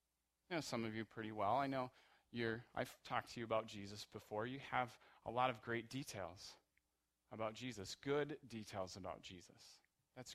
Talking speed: 175 wpm